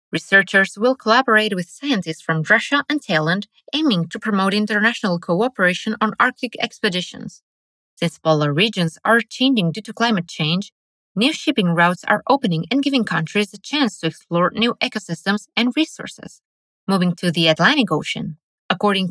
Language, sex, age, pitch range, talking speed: English, female, 20-39, 175-245 Hz, 150 wpm